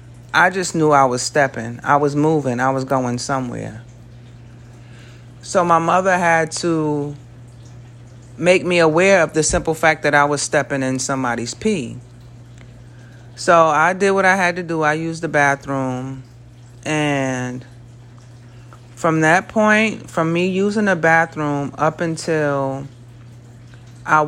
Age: 30-49